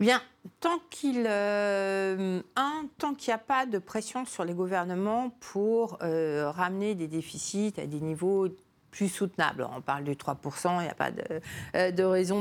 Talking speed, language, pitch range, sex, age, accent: 175 wpm, French, 160-210 Hz, female, 50-69, French